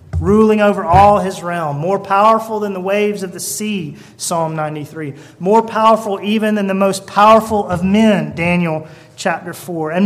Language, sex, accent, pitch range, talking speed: English, male, American, 140-195 Hz, 165 wpm